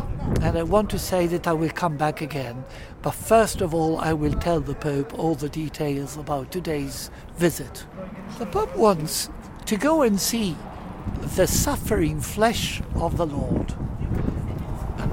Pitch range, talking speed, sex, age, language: 150-195 Hz, 160 wpm, male, 60-79, English